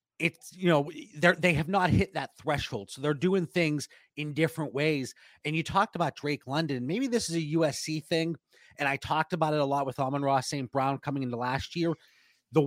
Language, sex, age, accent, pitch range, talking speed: English, male, 30-49, American, 145-185 Hz, 220 wpm